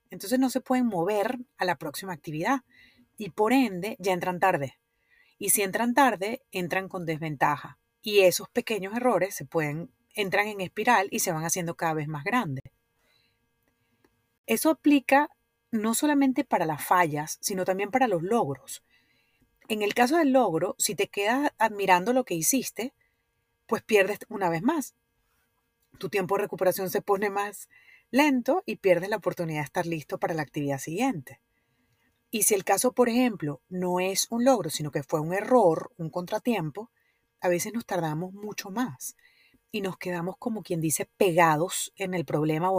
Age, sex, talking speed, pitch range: 30-49, female, 165 wpm, 170-245 Hz